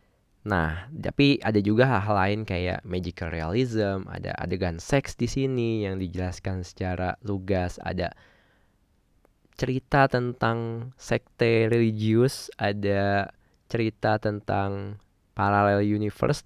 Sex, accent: male, native